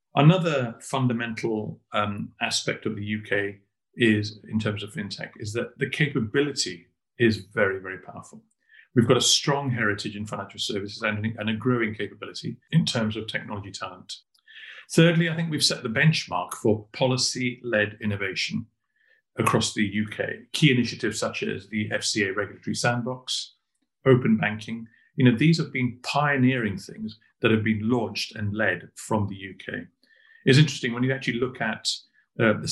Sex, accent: male, British